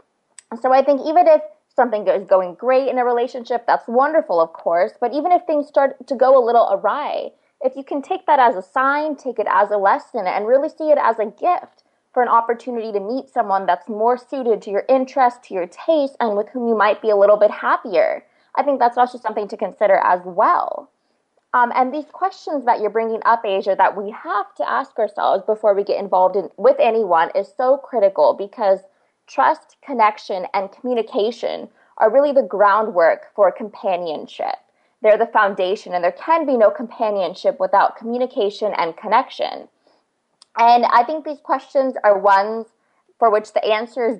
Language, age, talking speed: English, 20-39, 190 wpm